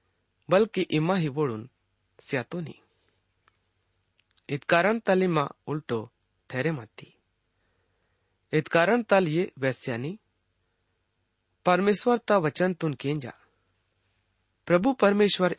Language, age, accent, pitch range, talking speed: English, 30-49, Indian, 110-175 Hz, 75 wpm